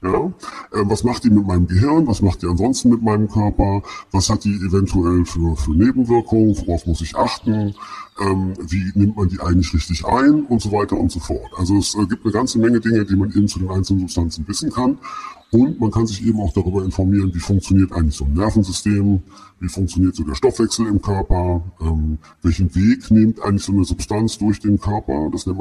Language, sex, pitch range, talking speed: German, female, 95-115 Hz, 210 wpm